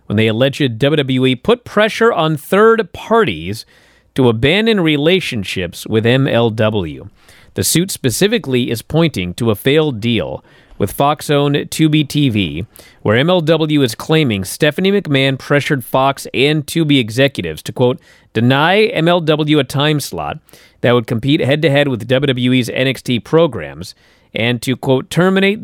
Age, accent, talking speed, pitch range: 40-59, American, 135 wpm, 120-155 Hz